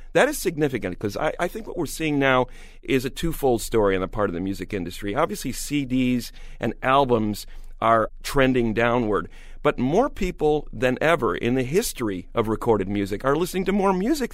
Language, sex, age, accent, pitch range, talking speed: English, male, 40-59, American, 105-145 Hz, 190 wpm